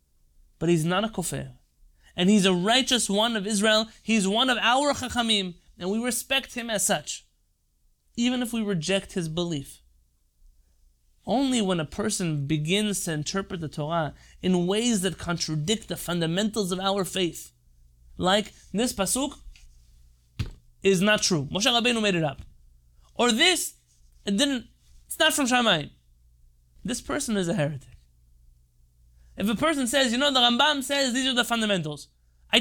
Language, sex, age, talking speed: English, male, 30-49, 155 wpm